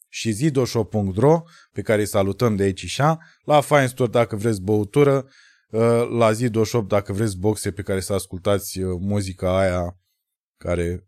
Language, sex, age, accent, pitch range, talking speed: Romanian, male, 20-39, native, 100-135 Hz, 145 wpm